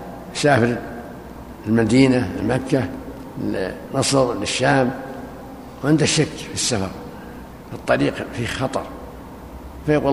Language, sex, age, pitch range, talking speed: Arabic, male, 60-79, 125-145 Hz, 85 wpm